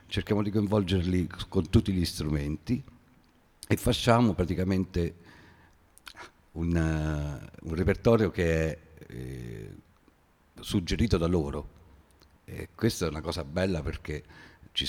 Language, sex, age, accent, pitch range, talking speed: Italian, male, 50-69, native, 75-85 Hz, 115 wpm